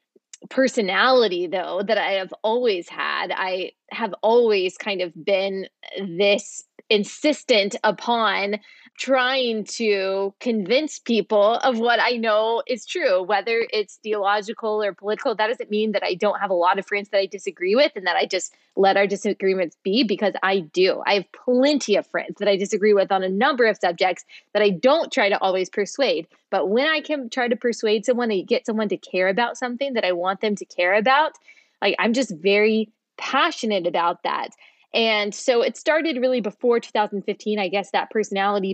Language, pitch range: English, 195-250 Hz